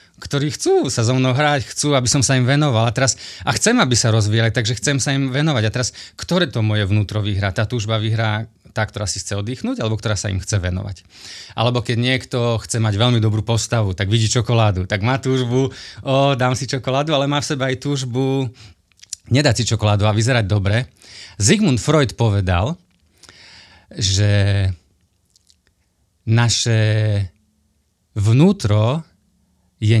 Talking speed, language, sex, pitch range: 165 wpm, Slovak, male, 95-130 Hz